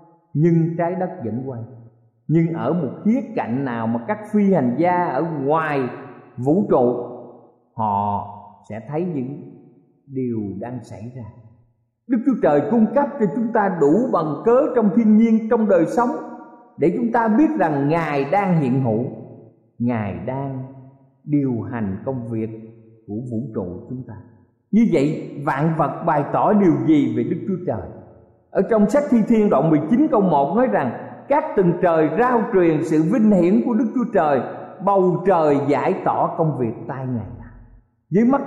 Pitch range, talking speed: 120-190 Hz, 170 wpm